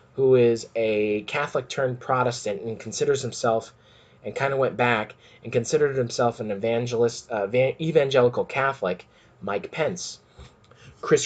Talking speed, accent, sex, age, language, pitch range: 135 wpm, American, male, 20-39, English, 110-125 Hz